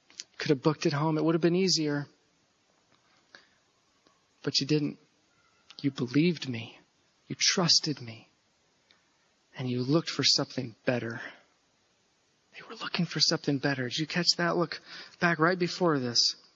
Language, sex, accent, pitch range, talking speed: English, male, American, 160-215 Hz, 145 wpm